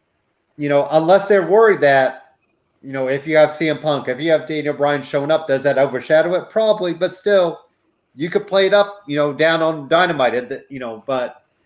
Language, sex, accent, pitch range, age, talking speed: English, male, American, 130-165 Hz, 30-49, 215 wpm